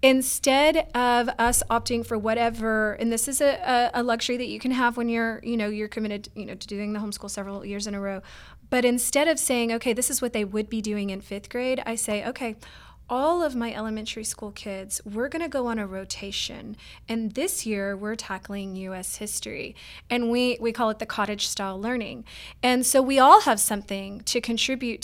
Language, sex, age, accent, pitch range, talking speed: English, female, 20-39, American, 210-250 Hz, 210 wpm